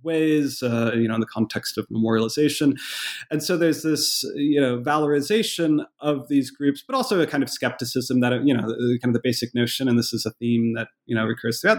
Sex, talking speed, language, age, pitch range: male, 220 wpm, English, 30-49, 120-150 Hz